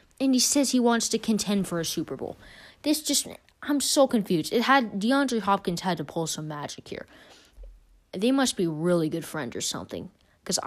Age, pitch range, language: 20-39, 160-225 Hz, English